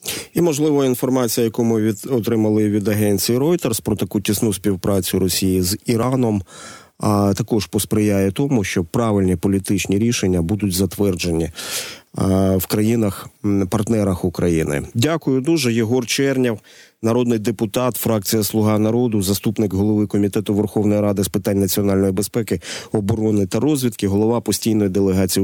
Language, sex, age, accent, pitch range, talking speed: Ukrainian, male, 30-49, native, 95-115 Hz, 125 wpm